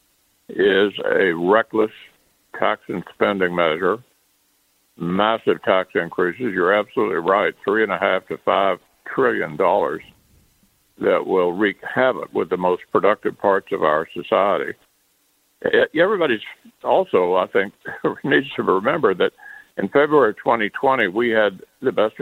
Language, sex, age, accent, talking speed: English, male, 60-79, American, 130 wpm